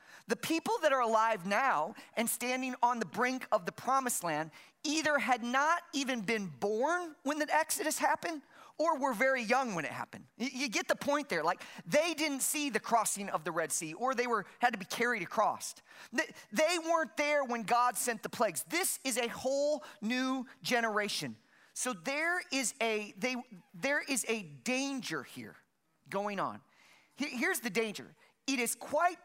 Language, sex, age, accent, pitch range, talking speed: English, male, 40-59, American, 200-270 Hz, 180 wpm